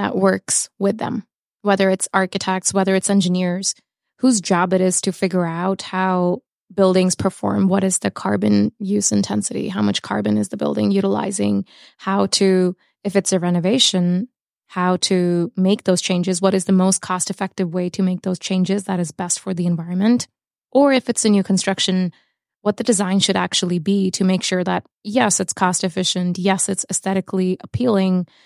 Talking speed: 180 wpm